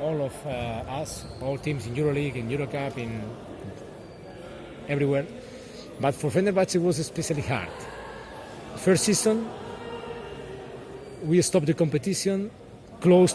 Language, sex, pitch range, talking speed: Turkish, male, 130-175 Hz, 120 wpm